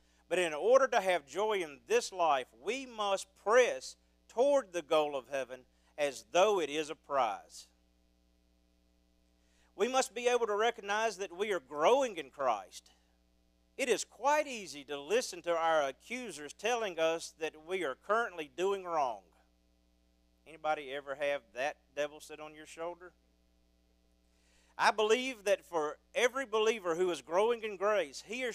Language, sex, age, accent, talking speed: English, male, 50-69, American, 155 wpm